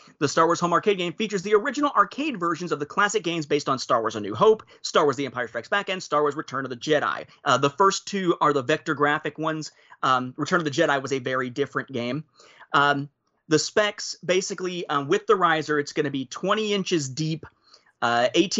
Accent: American